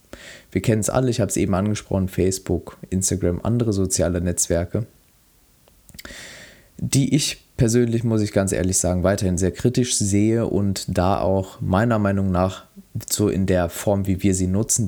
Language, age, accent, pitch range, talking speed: German, 20-39, German, 90-110 Hz, 160 wpm